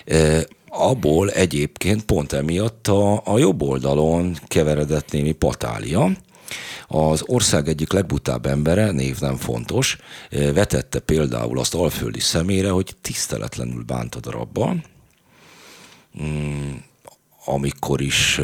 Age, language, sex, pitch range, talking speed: 50-69, Hungarian, male, 65-90 Hz, 100 wpm